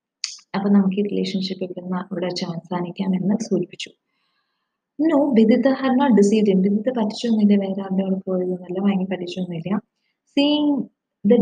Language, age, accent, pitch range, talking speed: English, 20-39, Indian, 200-240 Hz, 65 wpm